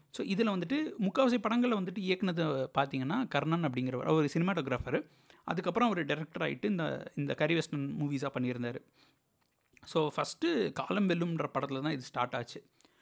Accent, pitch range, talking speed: native, 145-205 Hz, 140 wpm